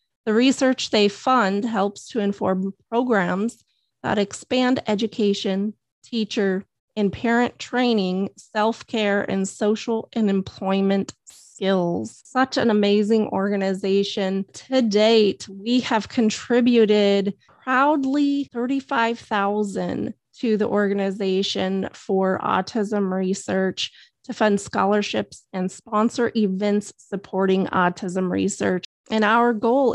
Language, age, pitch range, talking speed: English, 30-49, 195-230 Hz, 100 wpm